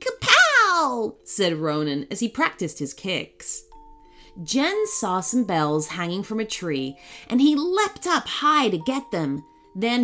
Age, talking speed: 30-49, 150 wpm